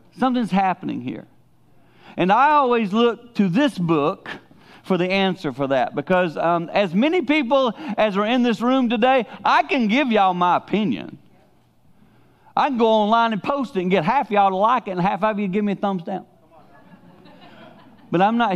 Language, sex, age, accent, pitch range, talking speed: English, male, 40-59, American, 140-195 Hz, 190 wpm